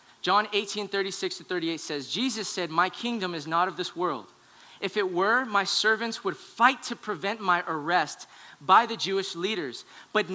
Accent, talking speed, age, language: American, 180 wpm, 20-39, English